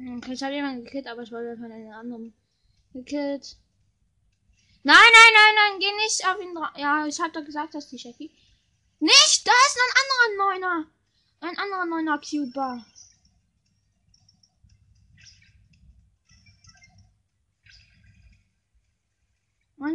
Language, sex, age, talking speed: German, female, 10-29, 115 wpm